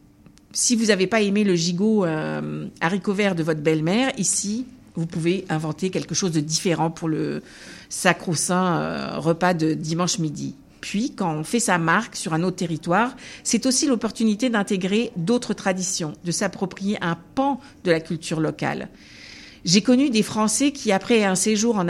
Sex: female